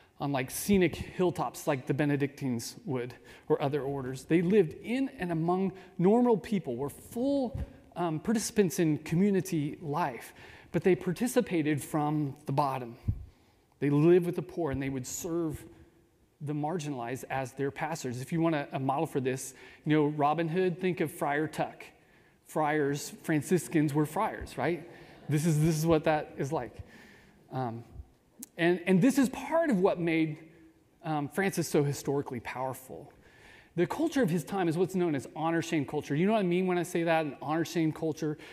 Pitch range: 145-180 Hz